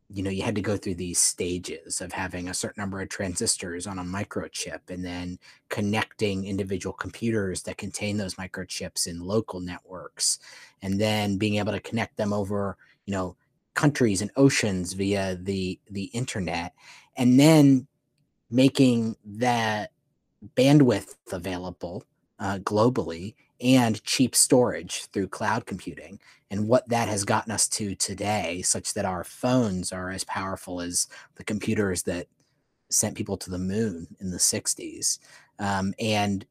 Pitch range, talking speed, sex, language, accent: 95-115 Hz, 150 wpm, male, English, American